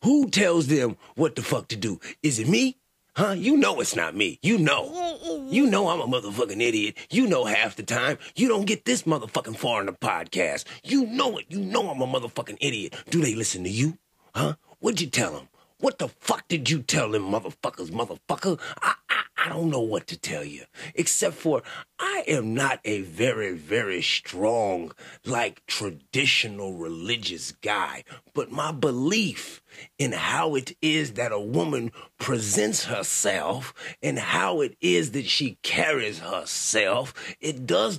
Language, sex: English, male